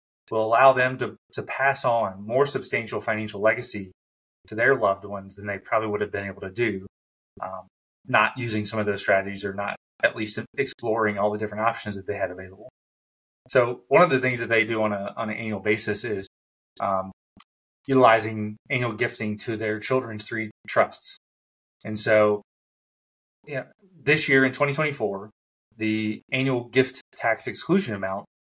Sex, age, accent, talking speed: male, 30-49, American, 175 wpm